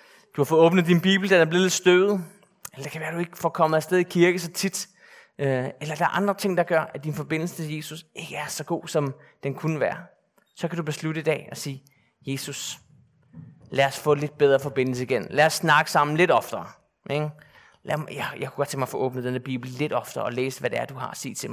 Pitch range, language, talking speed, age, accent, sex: 145-185 Hz, Danish, 250 wpm, 30-49, native, male